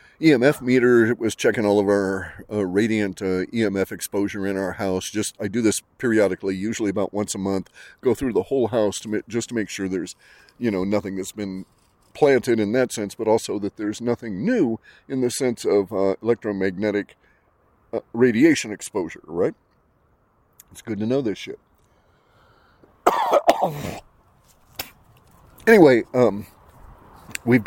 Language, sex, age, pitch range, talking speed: English, male, 40-59, 95-120 Hz, 155 wpm